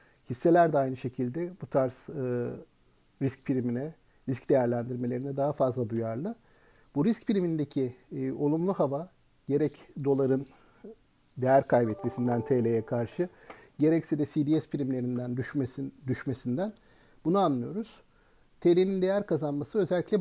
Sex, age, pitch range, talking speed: male, 50-69, 130-185 Hz, 115 wpm